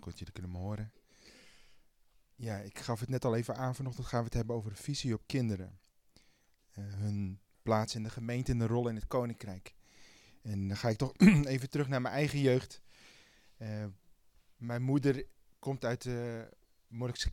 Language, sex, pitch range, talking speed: Dutch, male, 105-130 Hz, 185 wpm